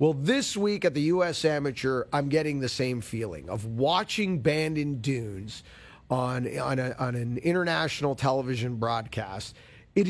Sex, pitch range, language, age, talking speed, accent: male, 130-170 Hz, English, 40-59, 155 wpm, American